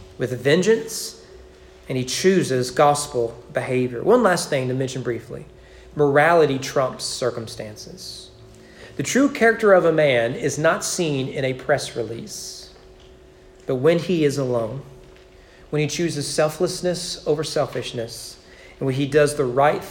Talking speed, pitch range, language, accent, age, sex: 140 wpm, 115-150 Hz, English, American, 40-59, male